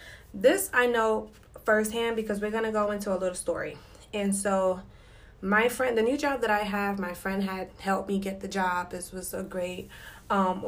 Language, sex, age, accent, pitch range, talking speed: English, female, 20-39, American, 190-245 Hz, 200 wpm